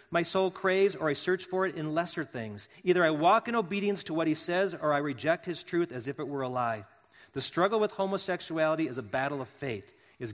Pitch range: 125-170 Hz